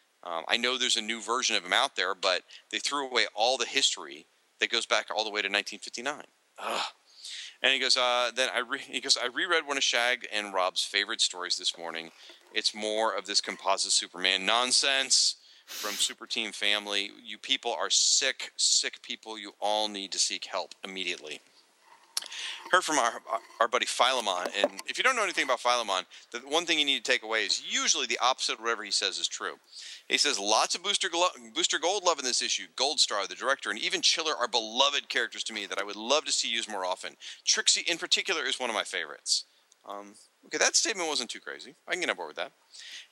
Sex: male